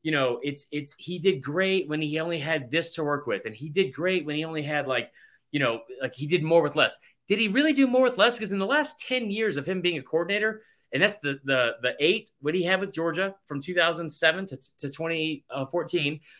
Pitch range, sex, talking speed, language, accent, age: 145-190 Hz, male, 240 wpm, English, American, 30-49